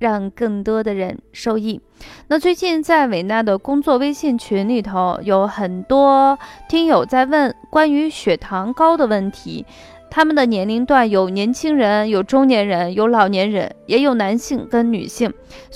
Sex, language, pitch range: female, Chinese, 200-285 Hz